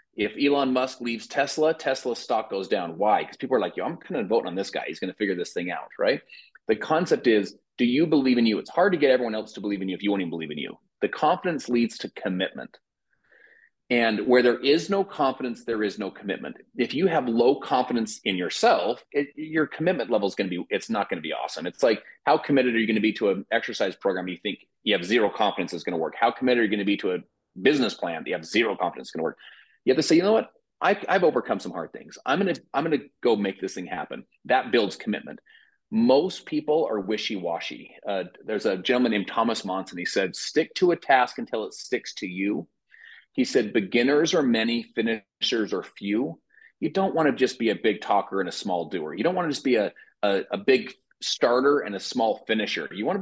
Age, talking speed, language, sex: 30-49, 245 wpm, English, male